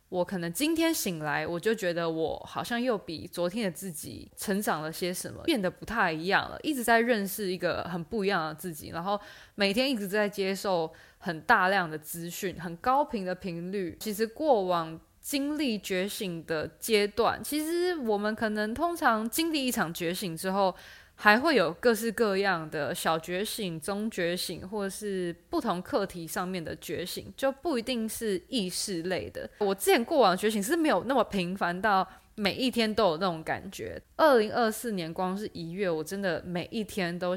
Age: 20-39